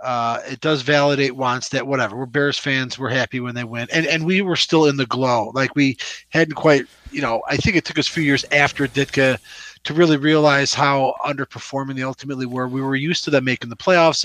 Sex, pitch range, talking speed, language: male, 130-160 Hz, 230 wpm, English